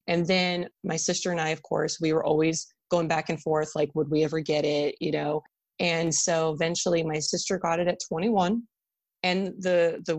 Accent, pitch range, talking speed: American, 155-180 Hz, 205 wpm